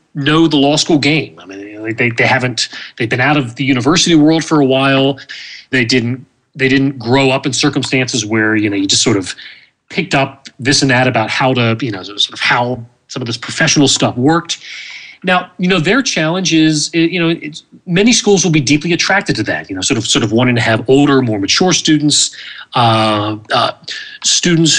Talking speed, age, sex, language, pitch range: 210 wpm, 30-49, male, English, 125-165 Hz